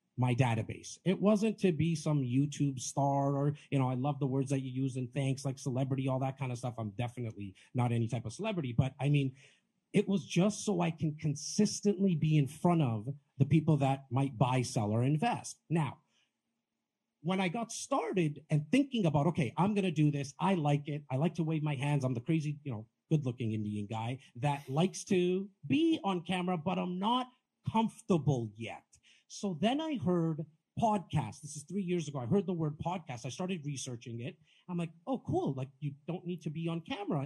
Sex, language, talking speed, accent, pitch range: male, English, 210 wpm, American, 135-180 Hz